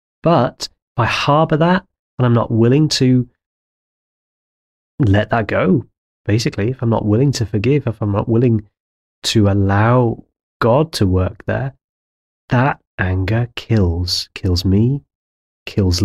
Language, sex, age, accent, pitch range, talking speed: English, male, 30-49, British, 95-120 Hz, 135 wpm